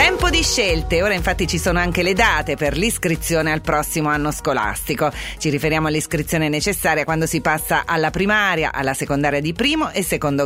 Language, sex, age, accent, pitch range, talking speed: Italian, female, 40-59, native, 155-210 Hz, 180 wpm